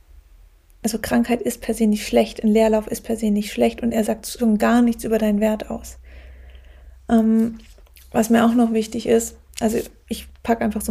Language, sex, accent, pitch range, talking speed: German, female, German, 215-245 Hz, 200 wpm